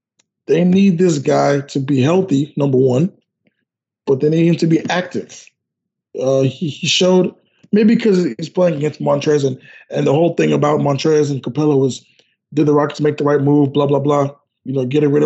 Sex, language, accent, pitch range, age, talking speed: male, English, American, 140-170 Hz, 20-39, 195 wpm